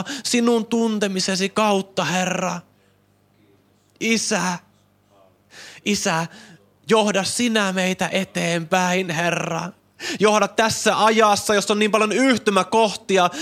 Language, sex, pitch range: Finnish, male, 165-210 Hz